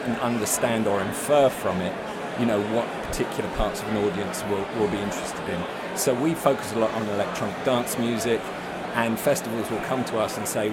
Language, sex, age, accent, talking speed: English, male, 40-59, British, 200 wpm